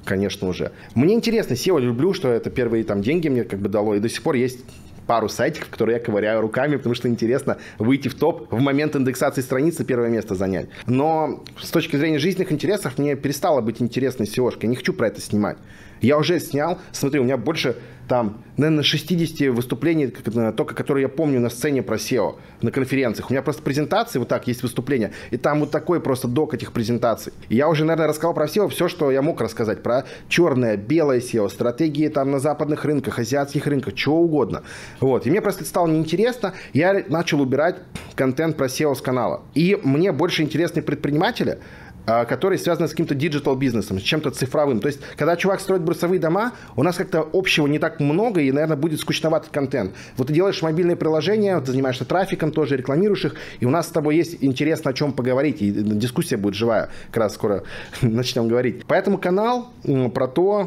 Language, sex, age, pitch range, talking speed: Russian, male, 20-39, 125-165 Hz, 195 wpm